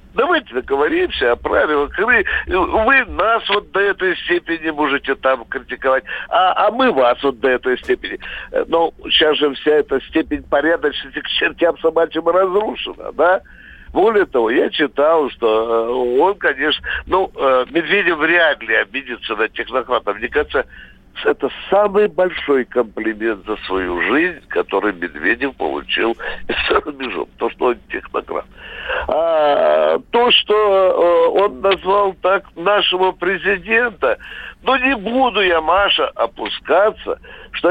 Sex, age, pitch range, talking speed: male, 60-79, 135-220 Hz, 125 wpm